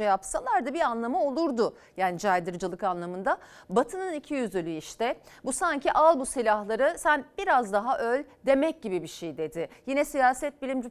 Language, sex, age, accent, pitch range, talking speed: Turkish, female, 40-59, native, 185-270 Hz, 155 wpm